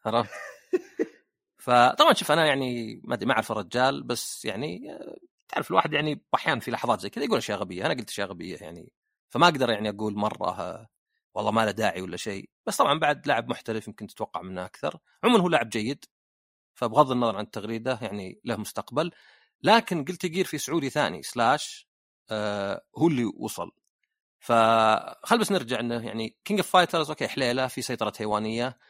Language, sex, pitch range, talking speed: Arabic, male, 110-165 Hz, 165 wpm